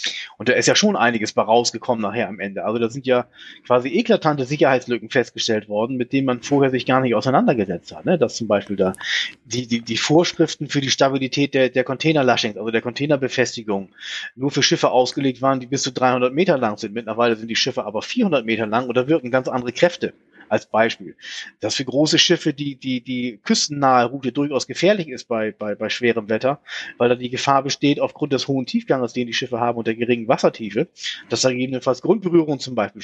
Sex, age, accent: male, 30-49, German